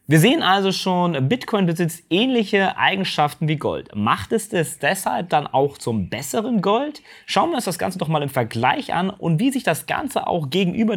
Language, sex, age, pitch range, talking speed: German, male, 30-49, 130-180 Hz, 195 wpm